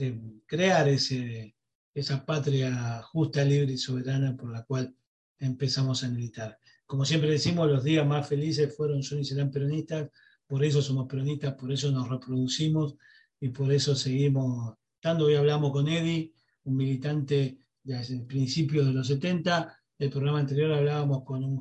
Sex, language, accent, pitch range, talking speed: male, Spanish, Argentinian, 130-150 Hz, 165 wpm